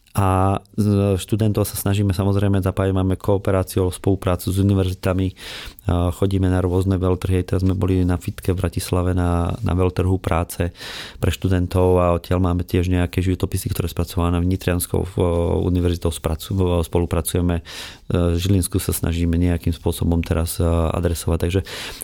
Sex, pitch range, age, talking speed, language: male, 90-100 Hz, 30-49, 135 wpm, Slovak